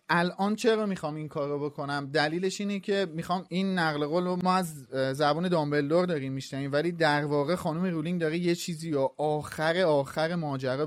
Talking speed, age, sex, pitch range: 160 wpm, 30-49, male, 145-175 Hz